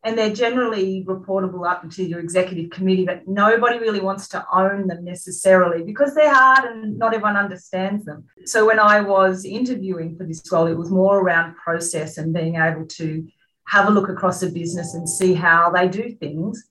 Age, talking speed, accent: 30-49, 195 wpm, Australian